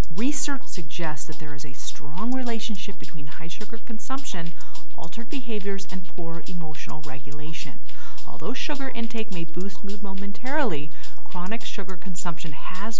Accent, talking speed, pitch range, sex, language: American, 135 wpm, 145-215 Hz, female, English